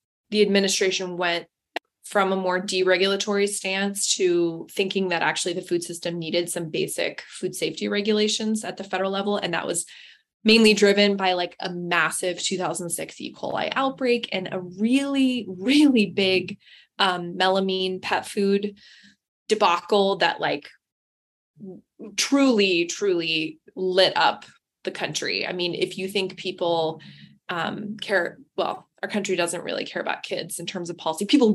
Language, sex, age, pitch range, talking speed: English, female, 20-39, 180-220 Hz, 145 wpm